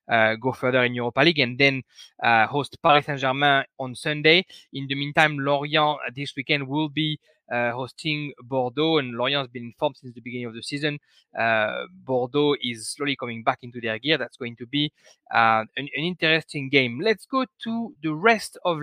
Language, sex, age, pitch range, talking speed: English, male, 20-39, 130-160 Hz, 195 wpm